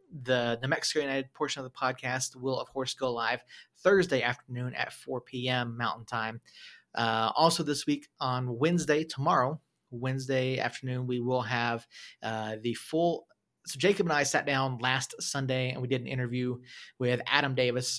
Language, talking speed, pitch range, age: English, 170 wpm, 125-145 Hz, 30-49